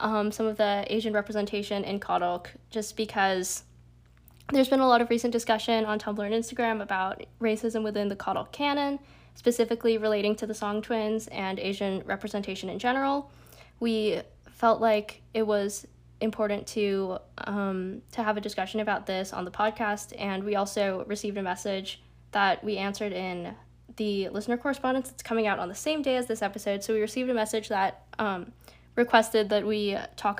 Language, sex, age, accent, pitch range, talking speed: English, female, 10-29, American, 200-225 Hz, 175 wpm